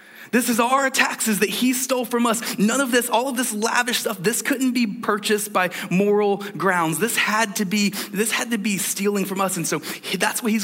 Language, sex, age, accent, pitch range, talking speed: English, male, 20-39, American, 180-215 Hz, 230 wpm